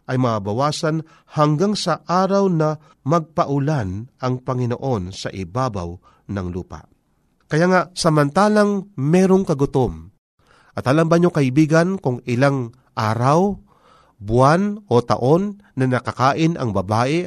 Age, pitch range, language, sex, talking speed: 40-59, 120-170 Hz, Filipino, male, 110 wpm